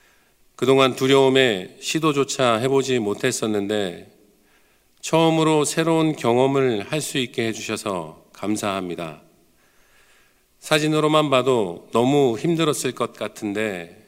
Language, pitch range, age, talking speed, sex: English, 110-145 Hz, 50-69, 75 wpm, male